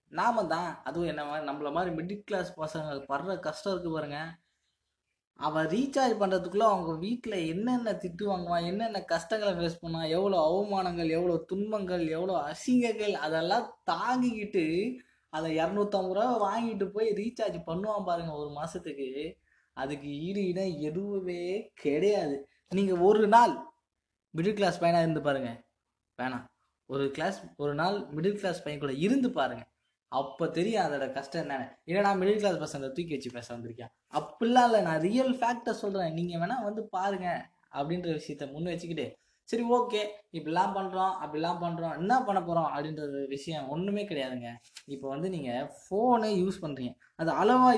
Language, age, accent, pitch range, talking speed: Tamil, 20-39, native, 150-205 Hz, 140 wpm